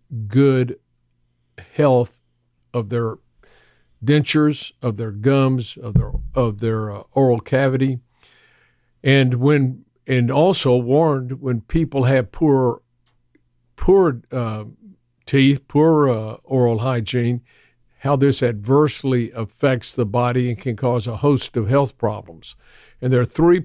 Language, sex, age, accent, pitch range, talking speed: English, male, 50-69, American, 115-140 Hz, 125 wpm